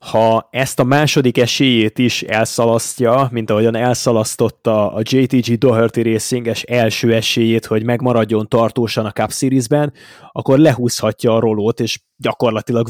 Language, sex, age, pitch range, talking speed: Hungarian, male, 20-39, 110-125 Hz, 130 wpm